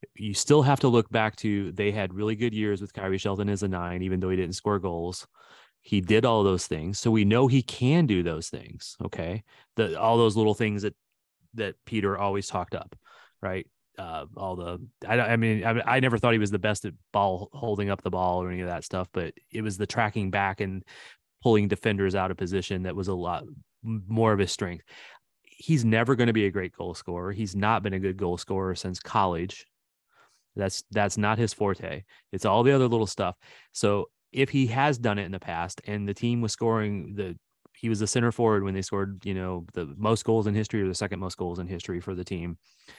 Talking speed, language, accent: 230 wpm, English, American